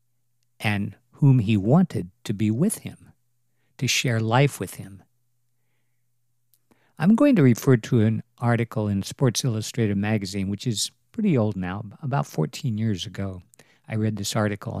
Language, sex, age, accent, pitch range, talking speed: English, male, 50-69, American, 110-135 Hz, 150 wpm